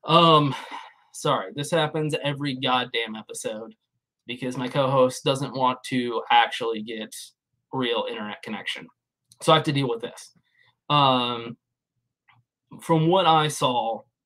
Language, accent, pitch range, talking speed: English, American, 130-160 Hz, 125 wpm